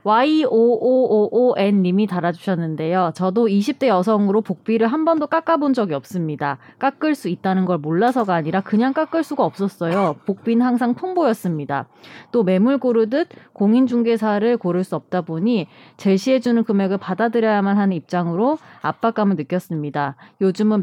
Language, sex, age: Korean, female, 20-39